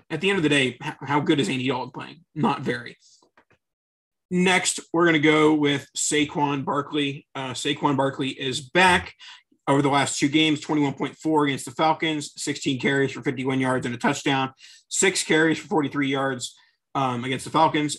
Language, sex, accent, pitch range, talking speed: English, male, American, 135-155 Hz, 175 wpm